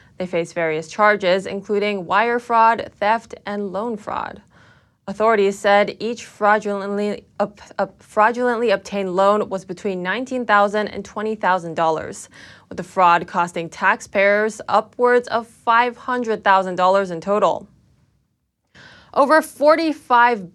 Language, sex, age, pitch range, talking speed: English, female, 20-39, 185-230 Hz, 100 wpm